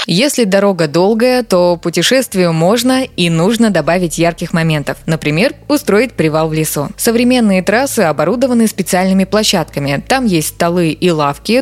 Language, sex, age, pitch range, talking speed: Russian, female, 20-39, 165-225 Hz, 135 wpm